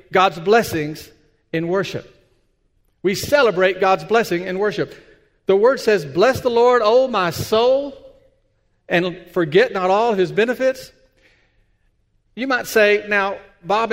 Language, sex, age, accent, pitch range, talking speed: English, male, 50-69, American, 165-235 Hz, 130 wpm